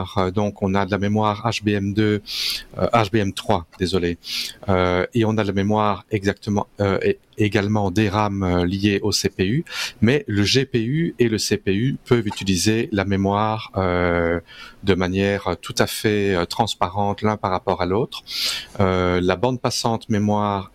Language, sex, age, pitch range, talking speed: French, male, 40-59, 95-115 Hz, 150 wpm